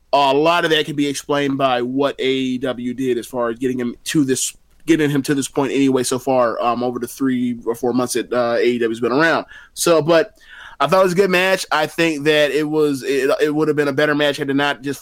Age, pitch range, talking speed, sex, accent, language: 20-39, 125-150 Hz, 255 wpm, male, American, English